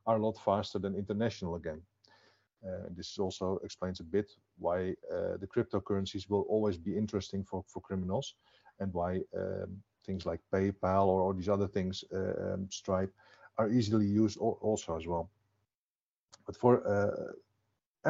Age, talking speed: 50-69, 160 wpm